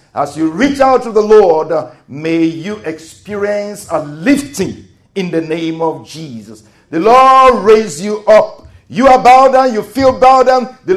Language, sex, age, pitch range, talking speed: English, male, 50-69, 115-185 Hz, 175 wpm